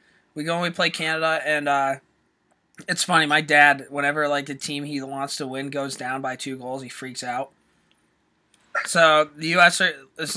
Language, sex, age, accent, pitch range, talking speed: English, male, 20-39, American, 135-160 Hz, 185 wpm